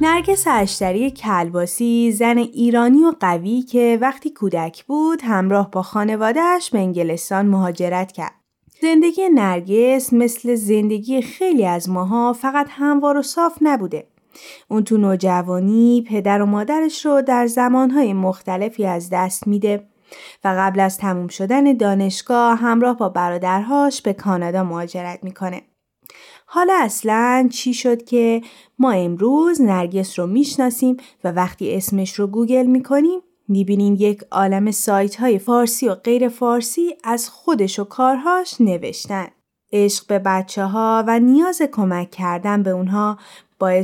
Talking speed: 135 wpm